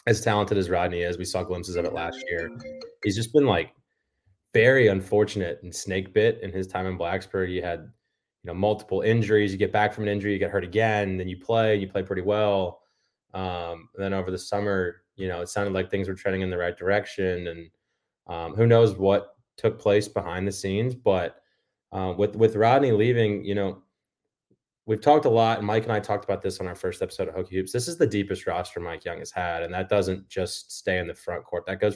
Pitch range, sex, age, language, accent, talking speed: 90-105 Hz, male, 20-39, English, American, 230 wpm